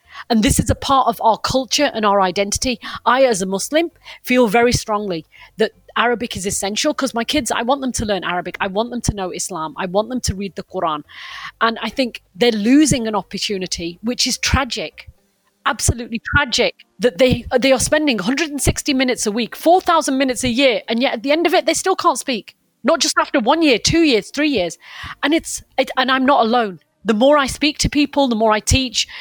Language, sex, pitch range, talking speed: Arabic, female, 210-275 Hz, 220 wpm